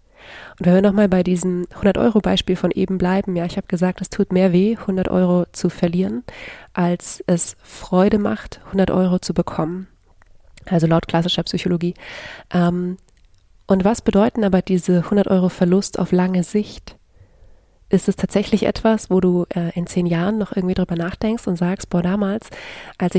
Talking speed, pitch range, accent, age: 160 wpm, 175-195 Hz, German, 20-39